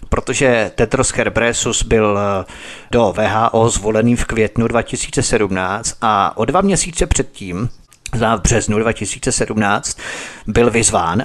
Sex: male